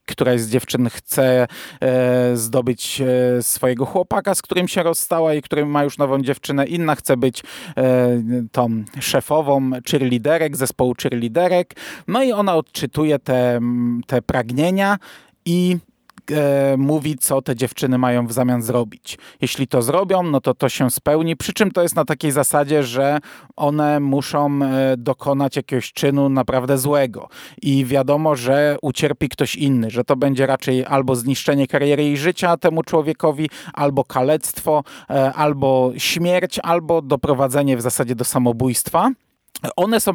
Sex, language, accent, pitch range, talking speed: male, Polish, native, 130-155 Hz, 140 wpm